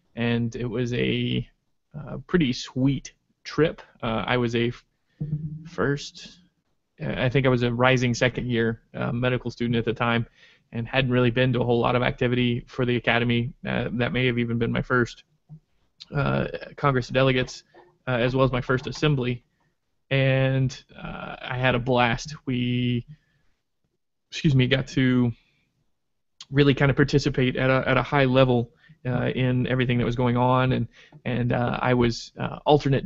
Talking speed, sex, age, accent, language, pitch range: 170 wpm, male, 20-39, American, English, 120-135 Hz